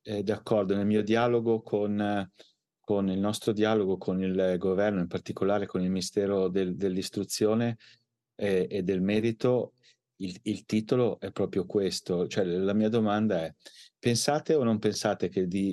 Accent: native